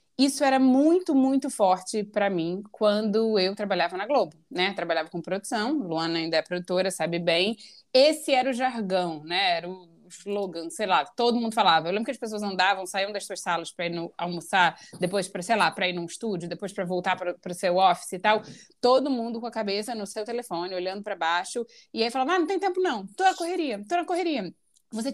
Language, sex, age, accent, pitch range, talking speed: Portuguese, female, 20-39, Brazilian, 195-280 Hz, 220 wpm